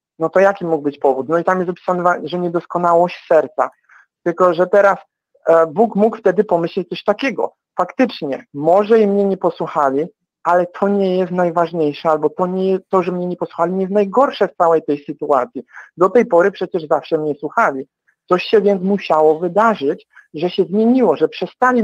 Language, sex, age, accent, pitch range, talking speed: Polish, male, 50-69, native, 165-200 Hz, 180 wpm